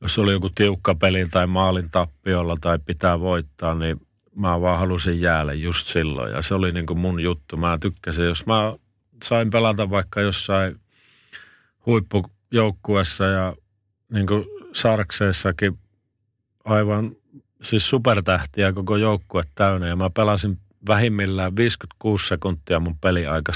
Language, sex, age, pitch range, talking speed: Finnish, male, 40-59, 85-105 Hz, 130 wpm